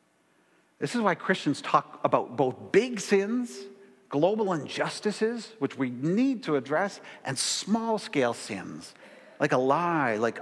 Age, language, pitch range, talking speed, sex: 50-69, English, 125-190 Hz, 130 wpm, male